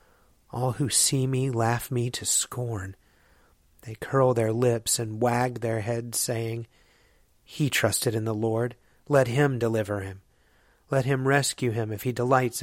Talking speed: 155 wpm